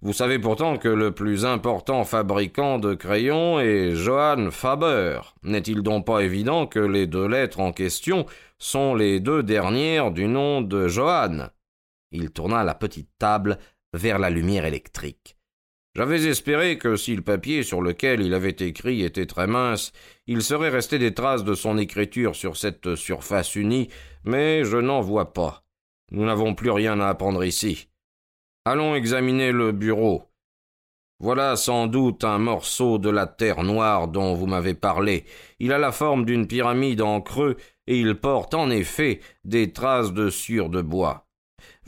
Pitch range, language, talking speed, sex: 95-130 Hz, French, 170 wpm, male